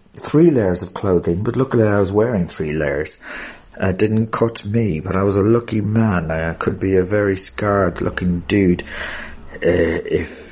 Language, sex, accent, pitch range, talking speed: English, male, British, 95-120 Hz, 175 wpm